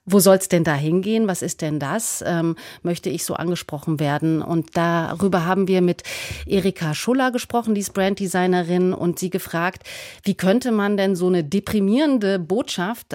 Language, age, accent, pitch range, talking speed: German, 30-49, German, 170-200 Hz, 175 wpm